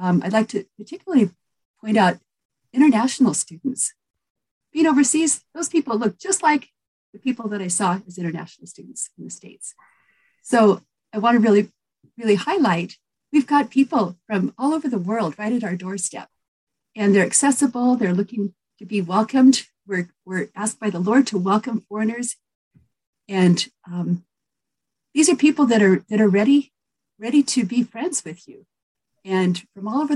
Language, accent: English, American